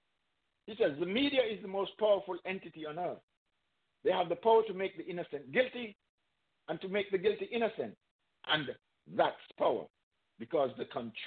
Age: 50-69